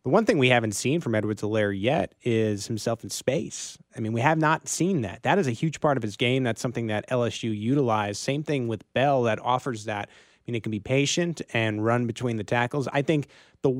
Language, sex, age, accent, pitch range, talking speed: English, male, 30-49, American, 110-135 Hz, 235 wpm